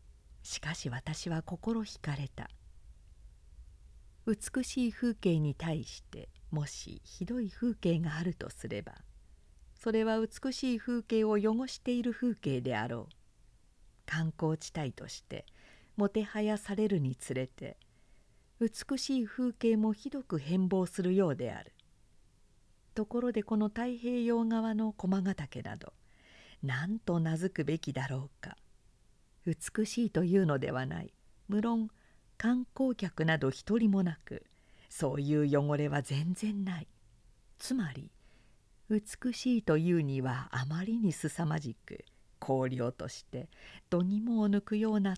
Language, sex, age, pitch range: Japanese, female, 50-69, 130-215 Hz